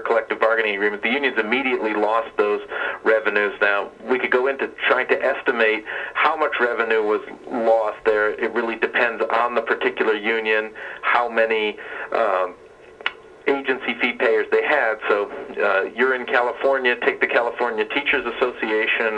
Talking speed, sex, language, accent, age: 140 wpm, male, English, American, 40-59